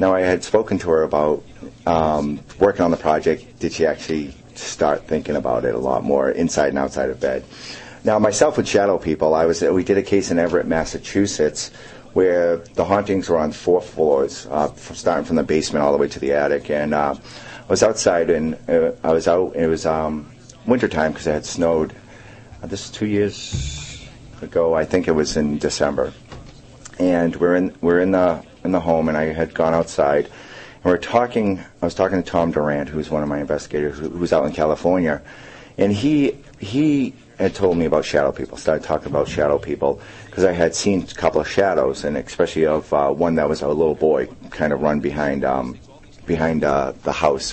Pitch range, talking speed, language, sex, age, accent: 75-90 Hz, 210 wpm, English, male, 40-59, American